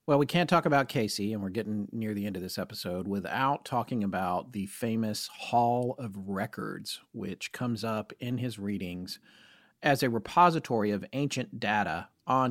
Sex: male